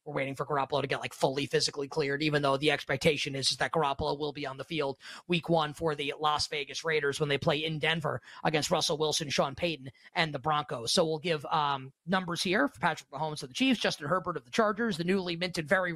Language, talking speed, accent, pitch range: English, 235 wpm, American, 150-185 Hz